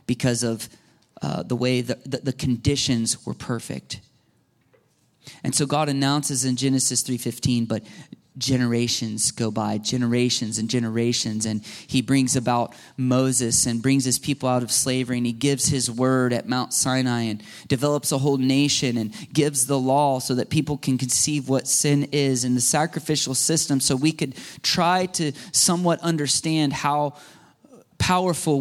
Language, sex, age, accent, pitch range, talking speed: English, male, 30-49, American, 125-155 Hz, 155 wpm